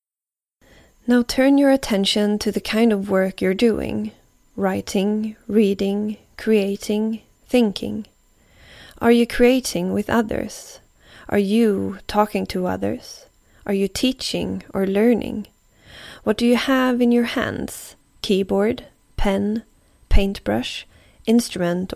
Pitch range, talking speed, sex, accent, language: 190-240 Hz, 110 wpm, female, native, Swedish